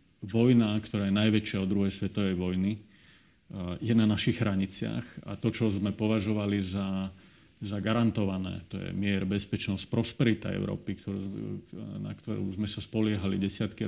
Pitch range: 100-115 Hz